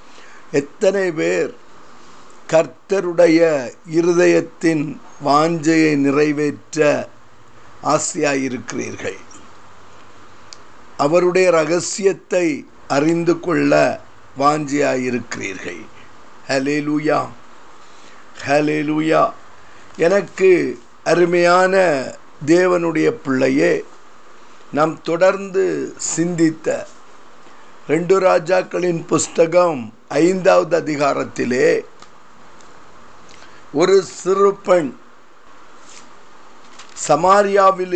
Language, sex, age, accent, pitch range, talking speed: Tamil, male, 50-69, native, 150-190 Hz, 45 wpm